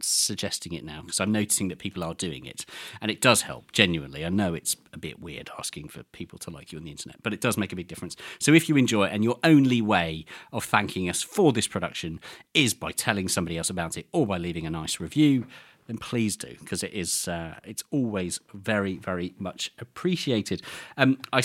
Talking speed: 230 wpm